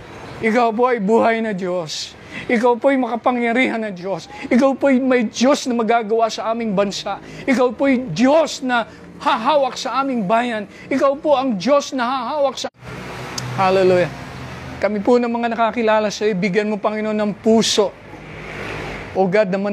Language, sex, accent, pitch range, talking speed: Filipino, male, native, 200-245 Hz, 160 wpm